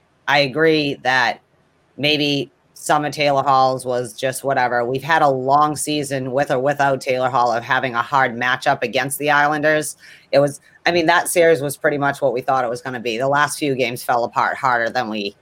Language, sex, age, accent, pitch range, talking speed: English, female, 30-49, American, 130-155 Hz, 215 wpm